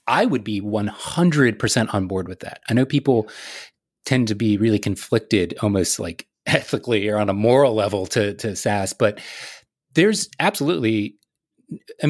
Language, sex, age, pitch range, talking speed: English, male, 30-49, 105-135 Hz, 150 wpm